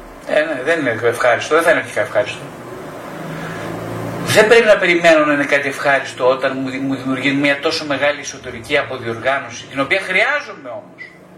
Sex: male